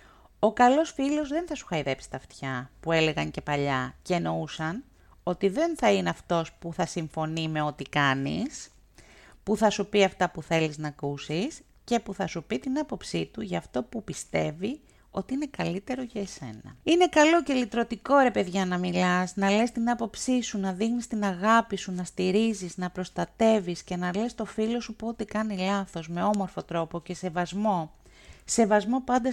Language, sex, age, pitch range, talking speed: Greek, female, 30-49, 170-220 Hz, 185 wpm